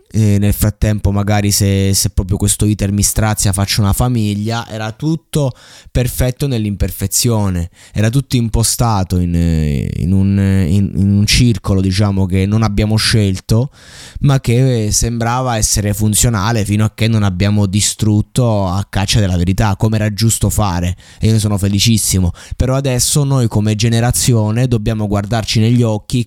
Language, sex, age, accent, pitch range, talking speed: Italian, male, 20-39, native, 95-115 Hz, 150 wpm